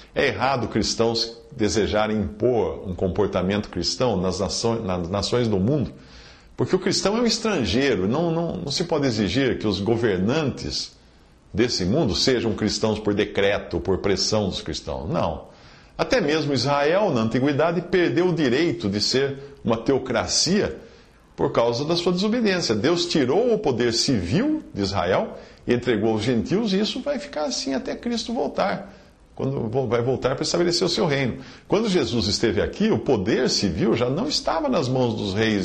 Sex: male